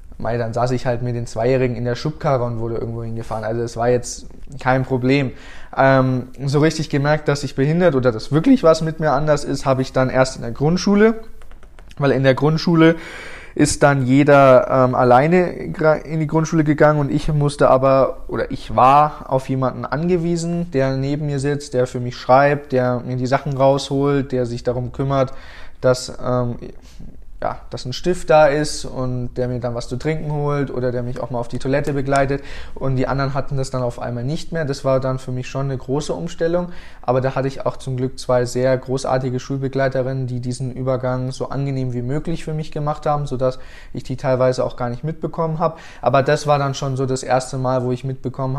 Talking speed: 210 wpm